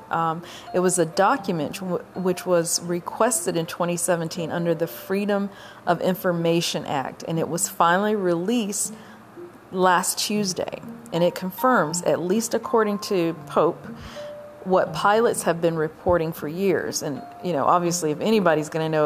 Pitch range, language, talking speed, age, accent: 155-185 Hz, English, 150 wpm, 40-59, American